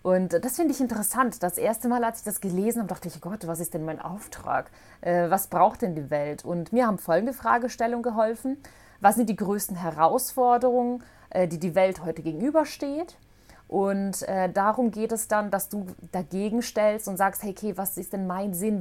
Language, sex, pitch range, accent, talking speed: German, female, 185-235 Hz, German, 190 wpm